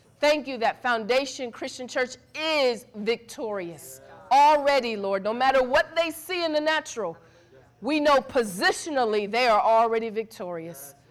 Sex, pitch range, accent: female, 200-270 Hz, American